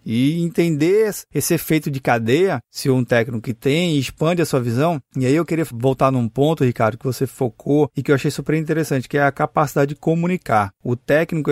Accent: Brazilian